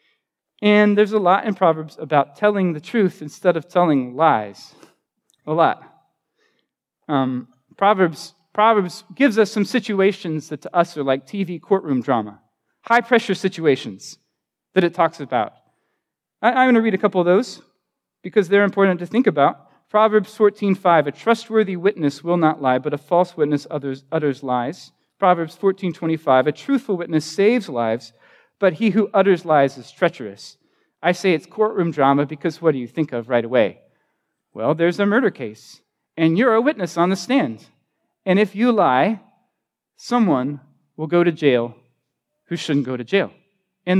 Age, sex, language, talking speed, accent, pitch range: 40-59, male, English, 165 wpm, American, 145-195 Hz